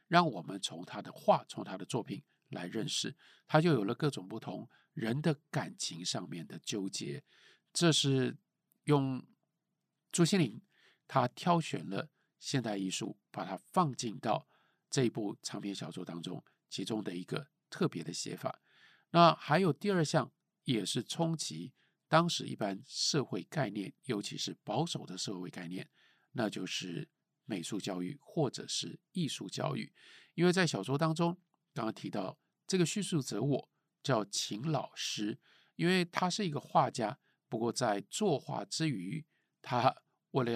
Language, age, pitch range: Chinese, 50-69, 125-170 Hz